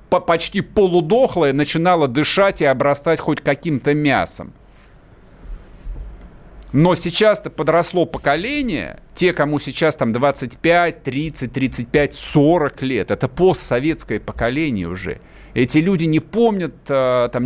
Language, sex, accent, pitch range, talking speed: Russian, male, native, 120-165 Hz, 105 wpm